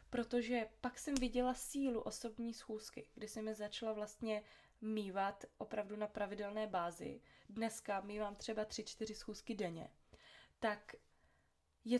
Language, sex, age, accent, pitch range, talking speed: Czech, female, 20-39, native, 220-250 Hz, 125 wpm